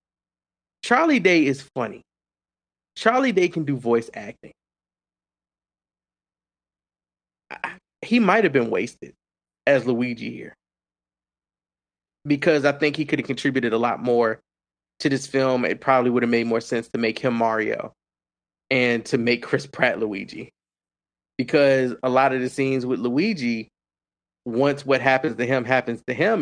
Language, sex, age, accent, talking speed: English, male, 20-39, American, 145 wpm